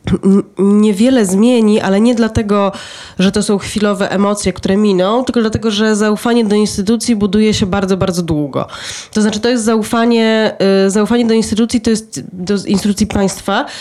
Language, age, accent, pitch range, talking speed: Polish, 20-39, native, 195-230 Hz, 155 wpm